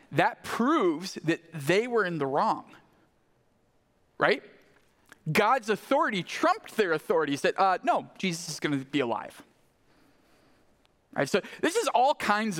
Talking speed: 140 wpm